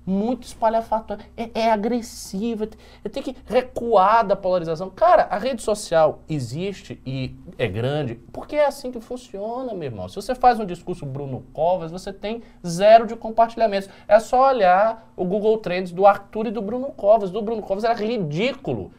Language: Portuguese